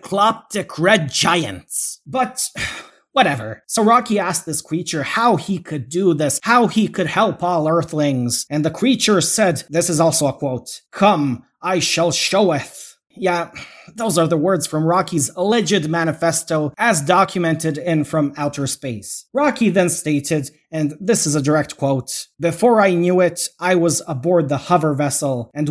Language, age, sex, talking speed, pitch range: English, 30-49, male, 160 wpm, 150-190 Hz